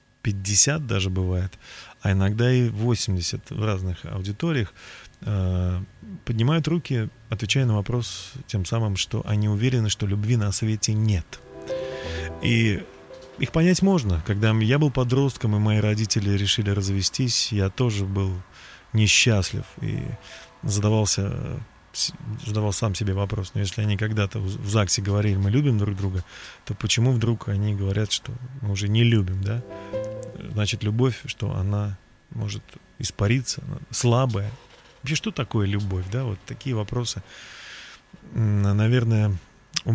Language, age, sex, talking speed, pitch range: Russian, 30-49, male, 130 wpm, 100-125 Hz